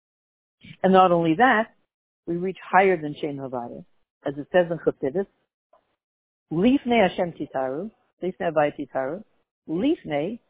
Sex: female